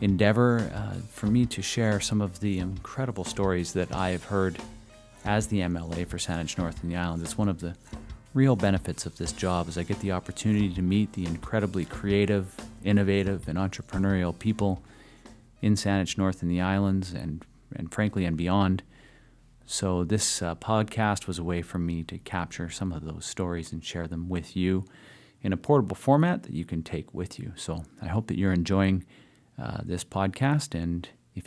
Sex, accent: male, American